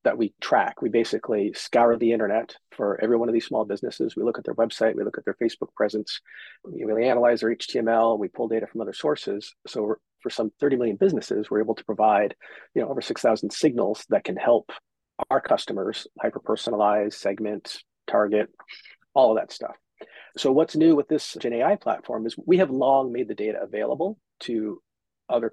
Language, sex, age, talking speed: English, male, 40-59, 190 wpm